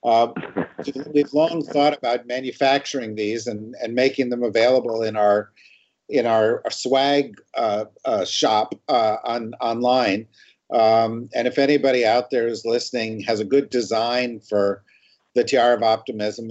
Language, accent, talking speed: English, American, 145 wpm